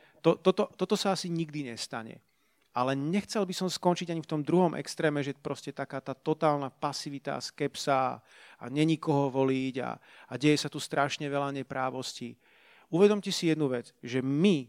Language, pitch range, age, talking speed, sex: Slovak, 135-165 Hz, 40-59, 170 wpm, male